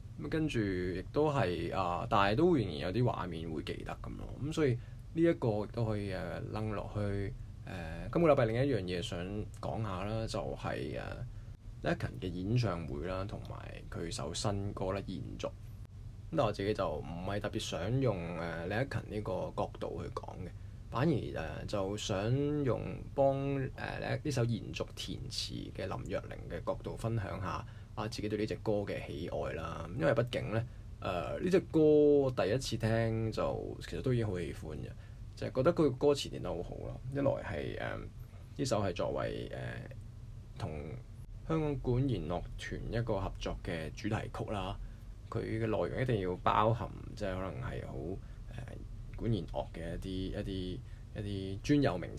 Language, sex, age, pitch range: Chinese, male, 20-39, 100-120 Hz